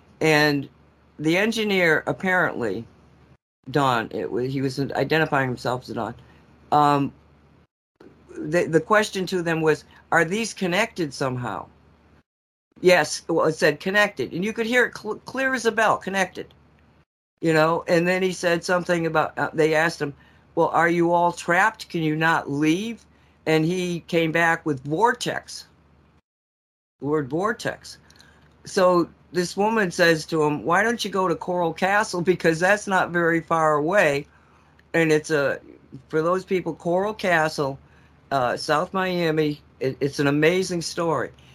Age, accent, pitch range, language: 50-69, American, 135-175 Hz, English